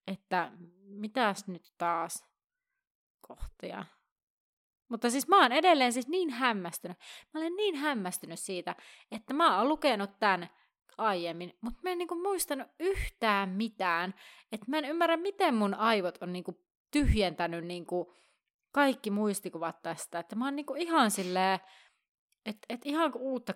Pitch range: 185-260 Hz